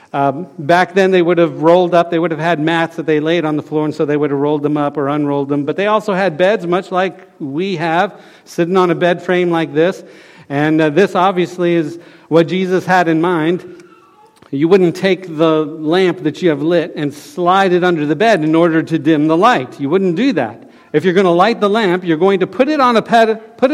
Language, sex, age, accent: English, male, 50-69, American